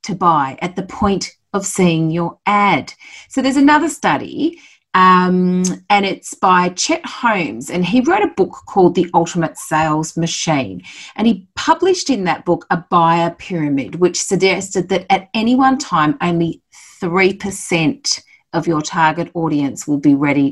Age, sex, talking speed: 40-59, female, 160 wpm